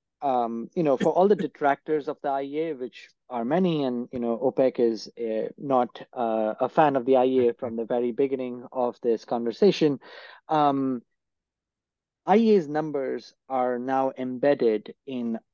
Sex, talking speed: male, 150 wpm